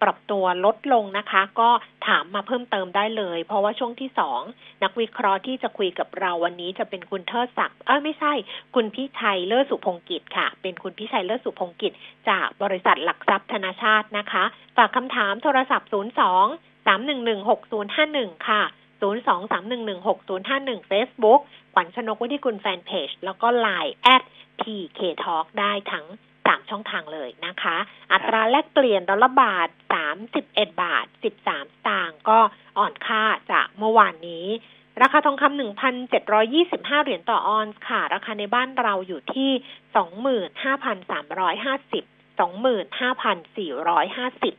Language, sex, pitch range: Thai, female, 200-255 Hz